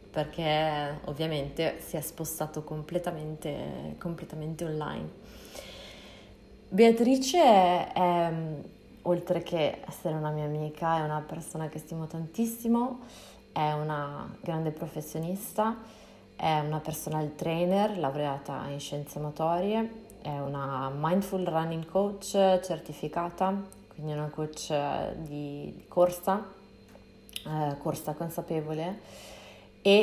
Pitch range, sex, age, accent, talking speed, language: 150-175 Hz, female, 20-39, native, 100 wpm, Italian